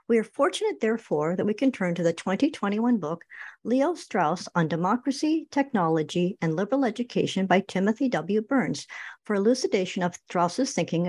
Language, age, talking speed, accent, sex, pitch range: English, 60-79, 155 wpm, American, male, 175-250 Hz